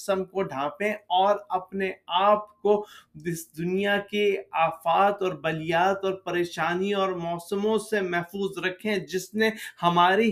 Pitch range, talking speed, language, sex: 185-215 Hz, 130 wpm, Urdu, male